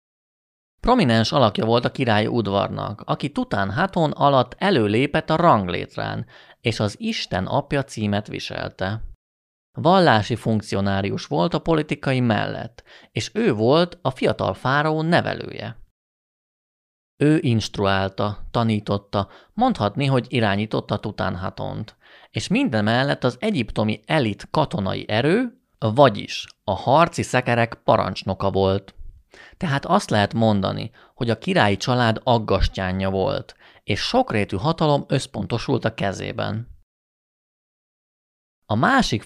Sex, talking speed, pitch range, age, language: male, 105 wpm, 100-140 Hz, 30-49, Hungarian